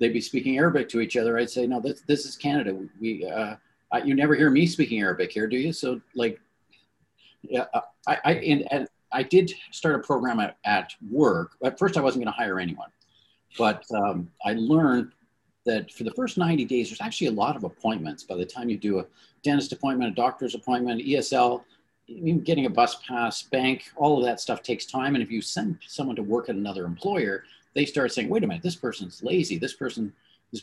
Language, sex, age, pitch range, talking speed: English, male, 50-69, 110-145 Hz, 215 wpm